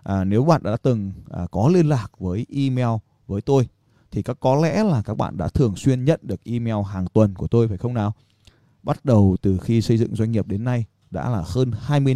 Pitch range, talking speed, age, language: 100-130 Hz, 230 wpm, 20-39, Vietnamese